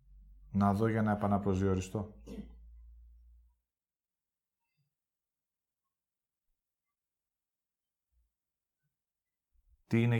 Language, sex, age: Greek, male, 50-69